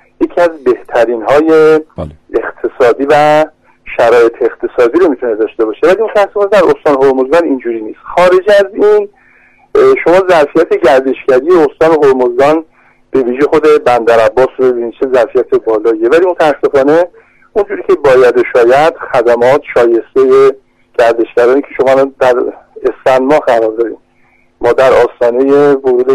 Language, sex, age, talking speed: Persian, male, 50-69, 130 wpm